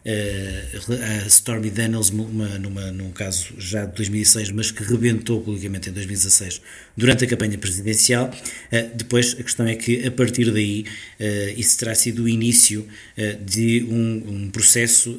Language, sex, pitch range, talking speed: Portuguese, male, 105-120 Hz, 140 wpm